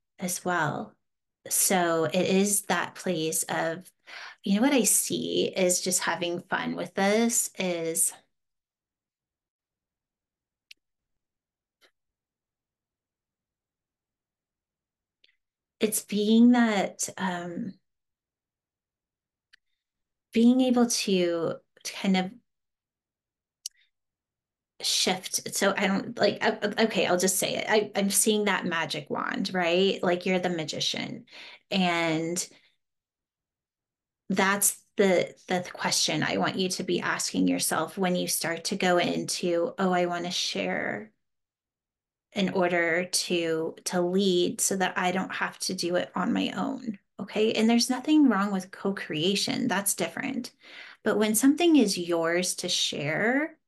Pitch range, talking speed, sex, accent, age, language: 175-215 Hz, 115 wpm, female, American, 30-49, English